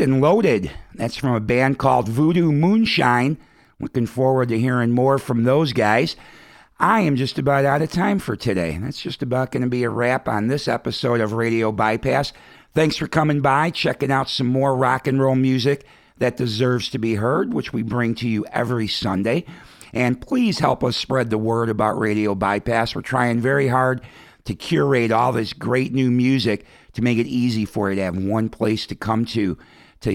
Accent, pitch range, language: American, 110-130 Hz, English